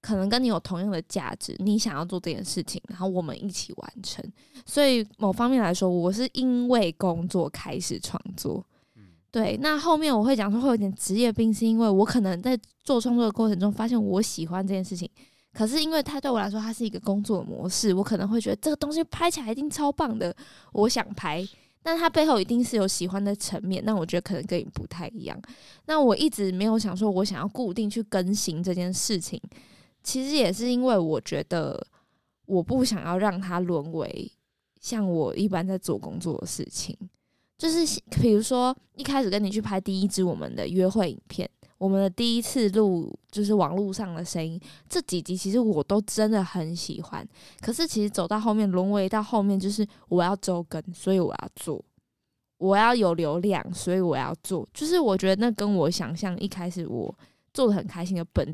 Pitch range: 185-230 Hz